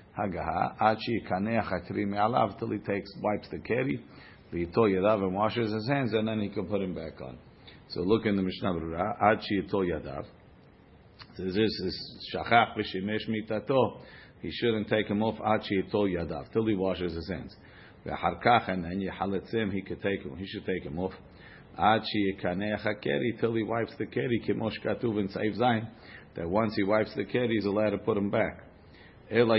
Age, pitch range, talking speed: 50-69, 95-110 Hz, 130 wpm